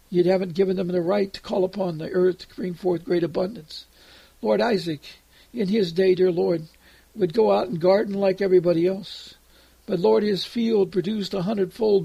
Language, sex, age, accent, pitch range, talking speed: English, male, 60-79, American, 175-200 Hz, 190 wpm